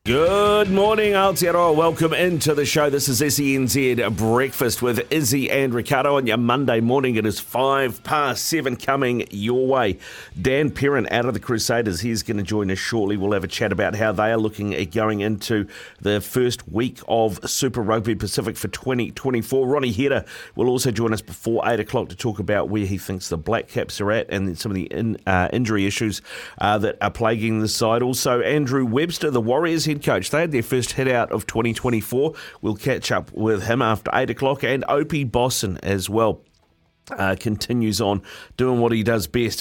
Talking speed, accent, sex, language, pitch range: 195 wpm, Australian, male, English, 100-130 Hz